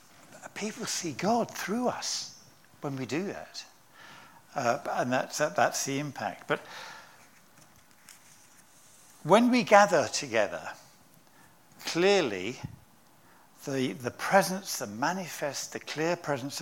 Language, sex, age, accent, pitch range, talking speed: English, male, 60-79, British, 135-185 Hz, 110 wpm